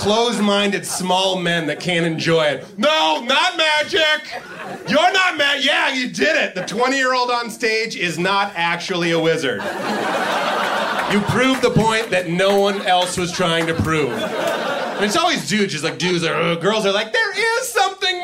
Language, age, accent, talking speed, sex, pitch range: Danish, 30-49, American, 175 wpm, male, 200-300 Hz